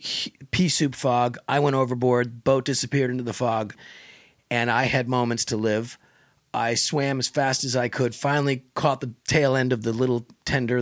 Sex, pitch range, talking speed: male, 115-135 Hz, 190 wpm